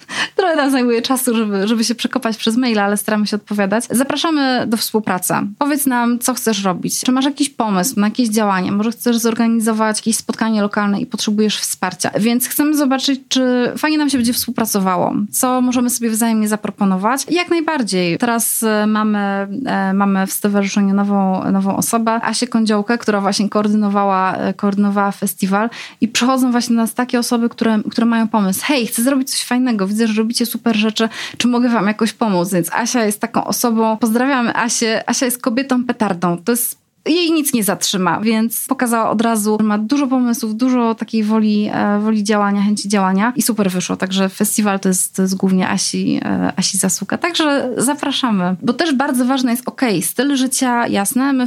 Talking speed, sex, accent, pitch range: 175 wpm, female, native, 205-245 Hz